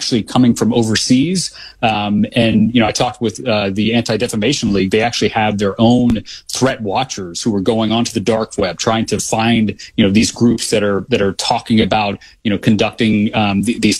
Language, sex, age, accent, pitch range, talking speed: English, male, 30-49, American, 105-125 Hz, 210 wpm